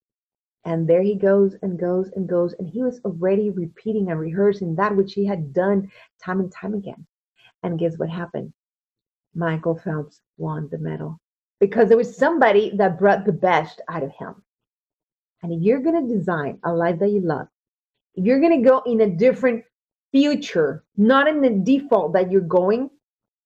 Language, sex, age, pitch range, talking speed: English, female, 30-49, 165-210 Hz, 180 wpm